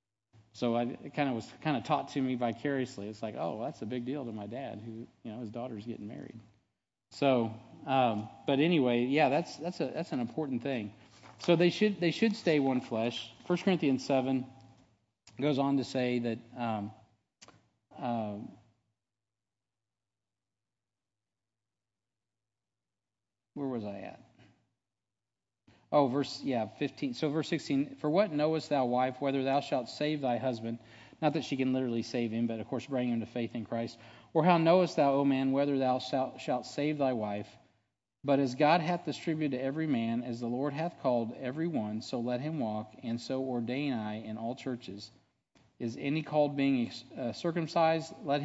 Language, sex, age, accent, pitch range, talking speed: English, male, 40-59, American, 115-140 Hz, 180 wpm